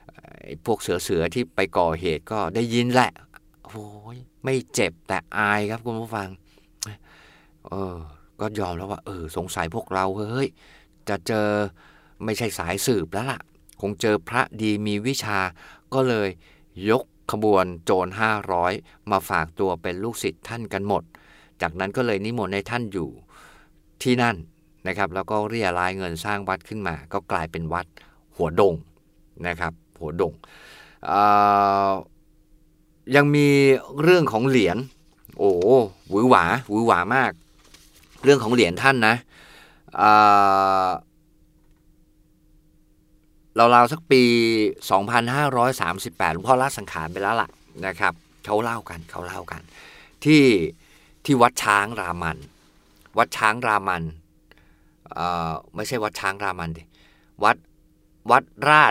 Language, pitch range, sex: Thai, 90-115 Hz, male